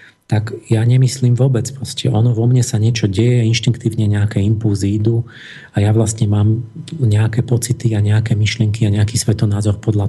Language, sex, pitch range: Slovak, male, 110-125 Hz